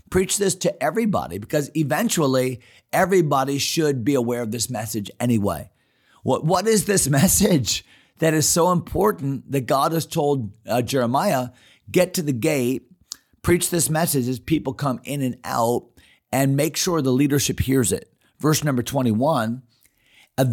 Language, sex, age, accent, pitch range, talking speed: English, male, 40-59, American, 115-150 Hz, 150 wpm